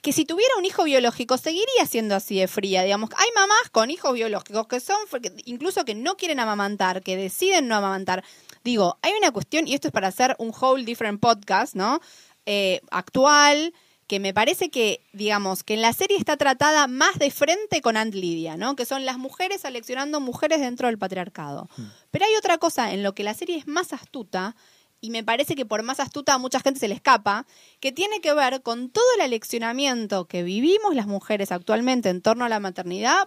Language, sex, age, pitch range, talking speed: English, female, 20-39, 195-285 Hz, 205 wpm